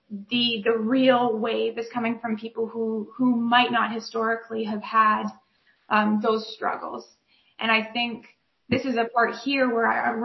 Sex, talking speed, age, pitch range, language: female, 170 wpm, 20-39, 220-245 Hz, English